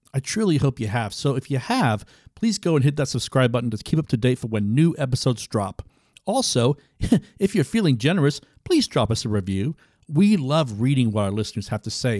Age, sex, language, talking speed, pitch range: 50-69, male, English, 220 wpm, 115-155 Hz